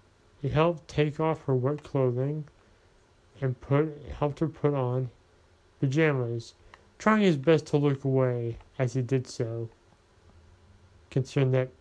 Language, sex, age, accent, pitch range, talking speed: English, male, 30-49, American, 90-135 Hz, 130 wpm